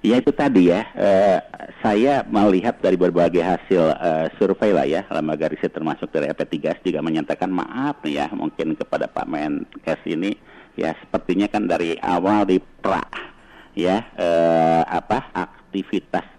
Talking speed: 150 wpm